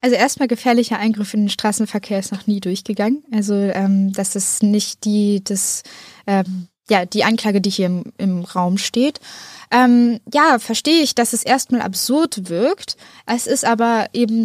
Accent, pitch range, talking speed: German, 215-260 Hz, 170 wpm